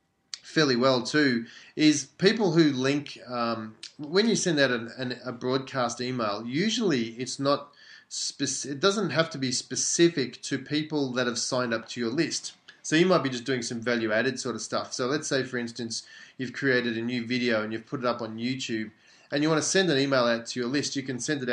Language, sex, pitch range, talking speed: English, male, 120-140 Hz, 215 wpm